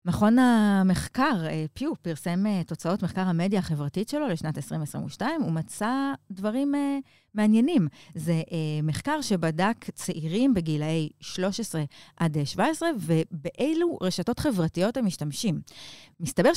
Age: 30-49